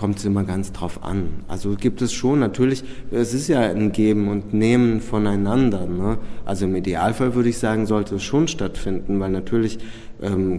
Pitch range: 95-115 Hz